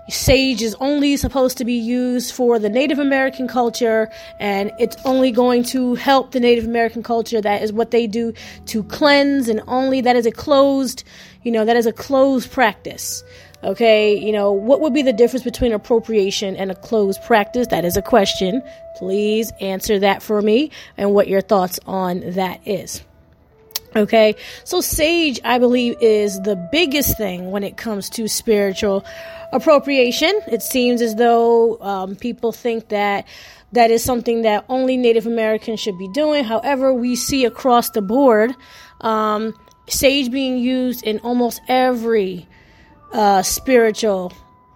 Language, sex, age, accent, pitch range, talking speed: English, female, 20-39, American, 210-250 Hz, 160 wpm